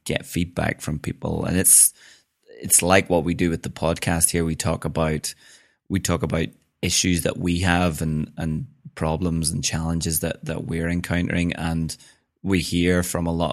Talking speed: 175 wpm